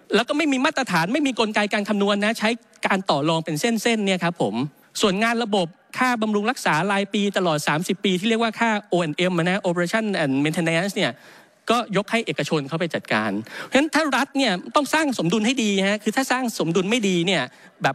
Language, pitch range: Thai, 160-230 Hz